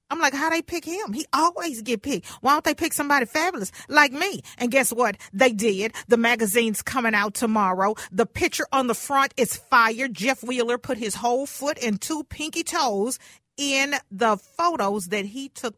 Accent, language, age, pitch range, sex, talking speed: American, English, 40-59, 195-255 Hz, female, 195 wpm